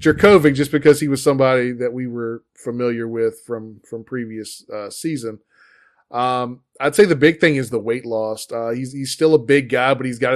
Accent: American